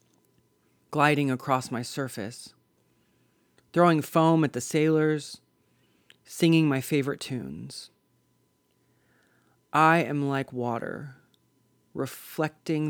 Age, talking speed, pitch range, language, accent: 30-49, 85 wpm, 125-150 Hz, English, American